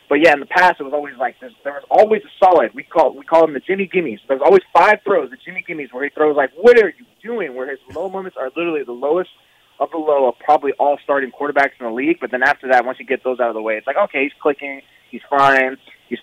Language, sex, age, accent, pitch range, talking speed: English, male, 20-39, American, 130-180 Hz, 285 wpm